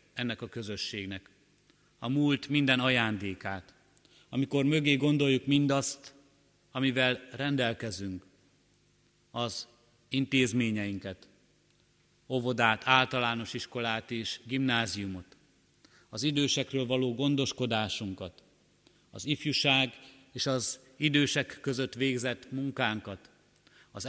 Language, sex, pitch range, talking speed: Hungarian, male, 110-135 Hz, 80 wpm